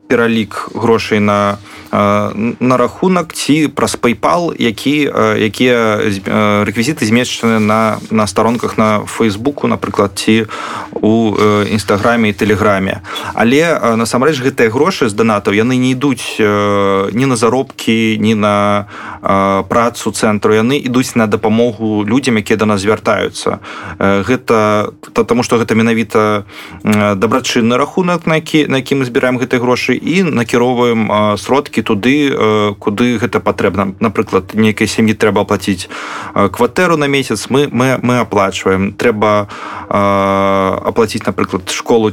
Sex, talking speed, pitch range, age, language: male, 120 wpm, 105-120 Hz, 20-39, Polish